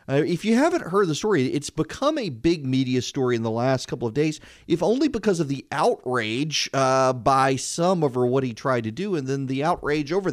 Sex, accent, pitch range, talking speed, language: male, American, 120-165 Hz, 225 wpm, English